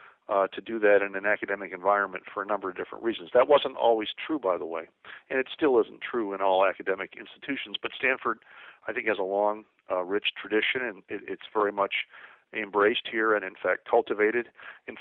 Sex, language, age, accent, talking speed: male, English, 50-69, American, 205 wpm